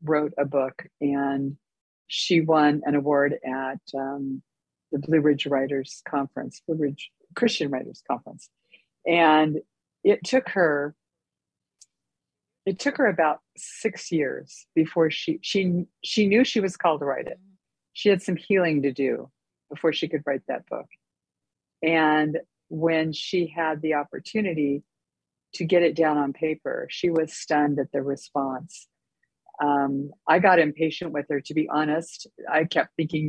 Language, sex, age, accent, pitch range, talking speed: English, female, 50-69, American, 145-175 Hz, 150 wpm